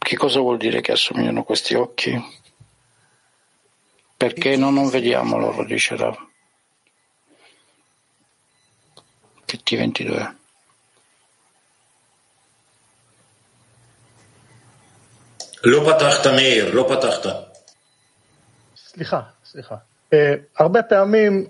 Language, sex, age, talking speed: Italian, male, 50-69, 70 wpm